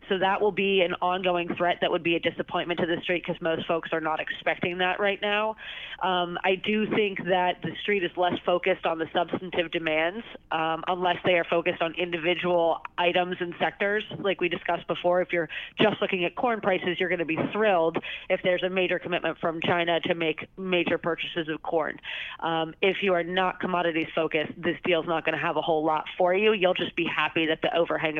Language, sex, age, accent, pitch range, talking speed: English, female, 30-49, American, 170-190 Hz, 220 wpm